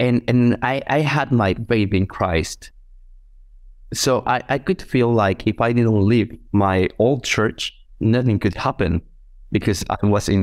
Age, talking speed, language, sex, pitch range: 30-49, 165 wpm, English, male, 95-120 Hz